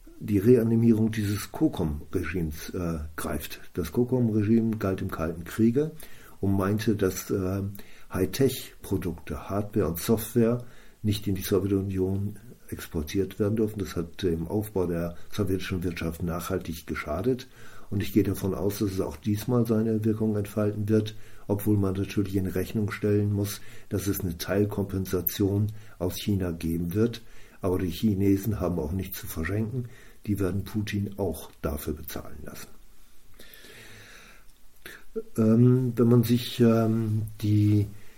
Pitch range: 95-110 Hz